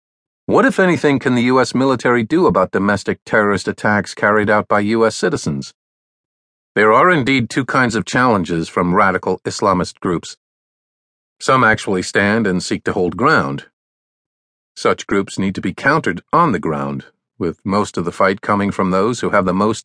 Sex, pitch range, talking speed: male, 80-115 Hz, 170 wpm